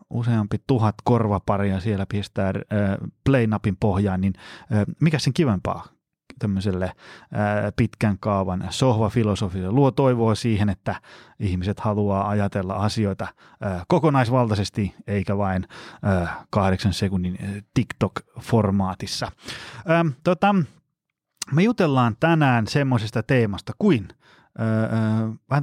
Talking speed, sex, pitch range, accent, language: 80 wpm, male, 100-130 Hz, native, Finnish